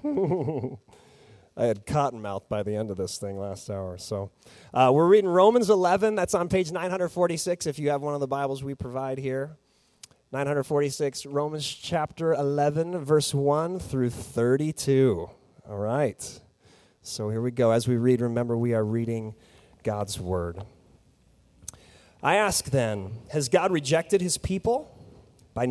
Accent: American